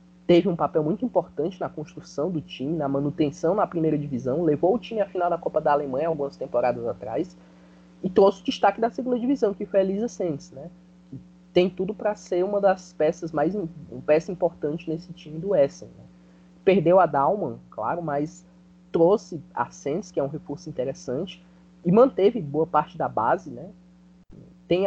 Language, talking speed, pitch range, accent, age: Portuguese, 180 wpm, 145-185 Hz, Brazilian, 20-39